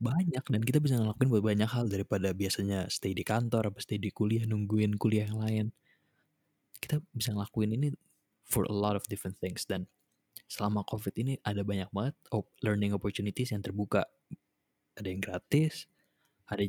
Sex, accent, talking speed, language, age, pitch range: male, native, 165 wpm, Indonesian, 20-39, 105-120 Hz